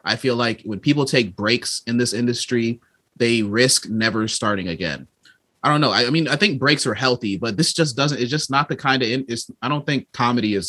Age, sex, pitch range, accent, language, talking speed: 30-49, male, 105-130 Hz, American, English, 230 wpm